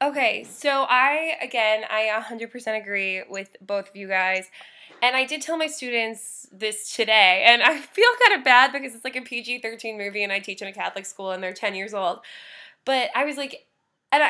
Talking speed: 205 wpm